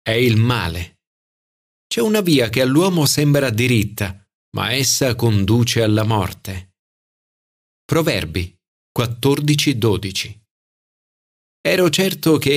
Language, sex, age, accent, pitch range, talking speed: Italian, male, 40-59, native, 105-150 Hz, 95 wpm